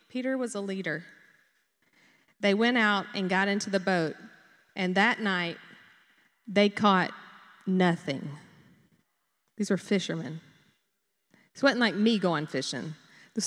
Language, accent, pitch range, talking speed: Russian, American, 190-240 Hz, 125 wpm